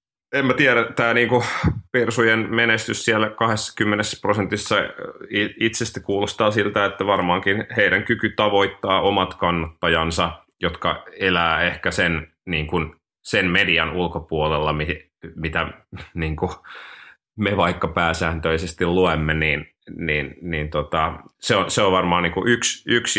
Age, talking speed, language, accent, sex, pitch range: 30-49, 95 wpm, Finnish, native, male, 80-95 Hz